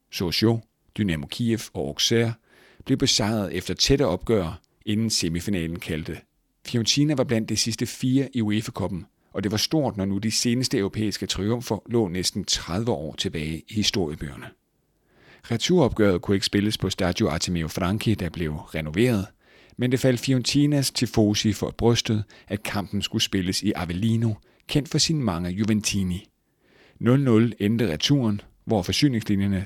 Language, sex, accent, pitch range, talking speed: Danish, male, native, 95-115 Hz, 150 wpm